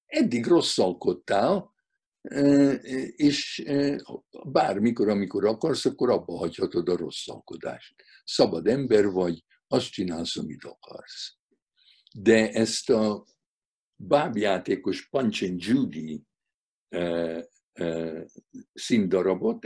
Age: 60-79